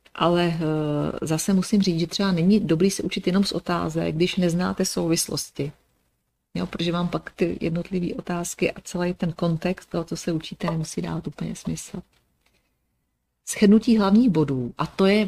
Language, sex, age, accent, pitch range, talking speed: Czech, female, 40-59, native, 150-180 Hz, 160 wpm